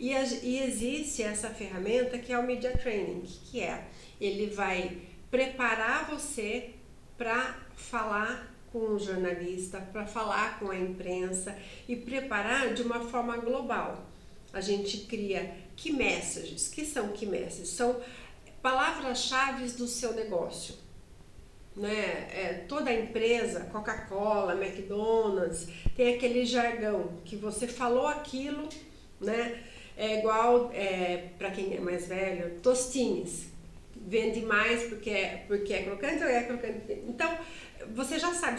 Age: 50-69